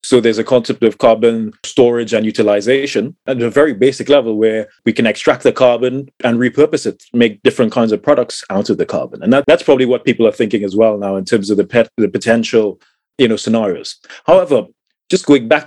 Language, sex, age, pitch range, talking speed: English, male, 30-49, 115-130 Hz, 205 wpm